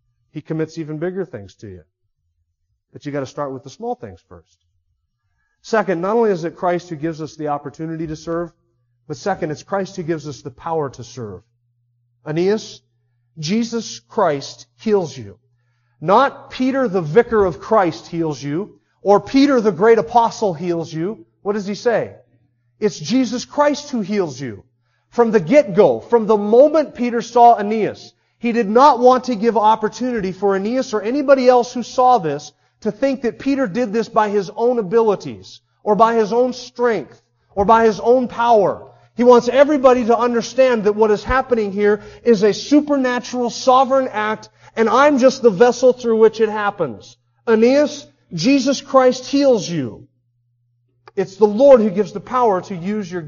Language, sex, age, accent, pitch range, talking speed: English, male, 40-59, American, 145-235 Hz, 175 wpm